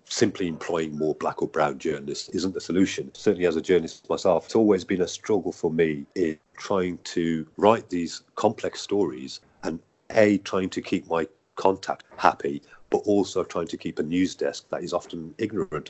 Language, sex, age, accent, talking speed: English, male, 40-59, British, 185 wpm